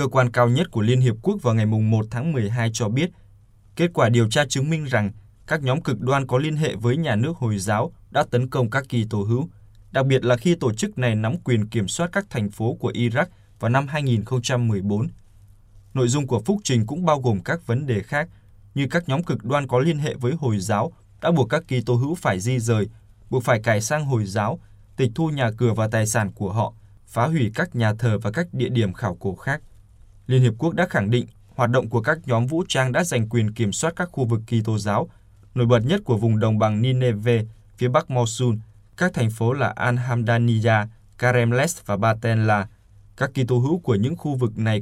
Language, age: Vietnamese, 20-39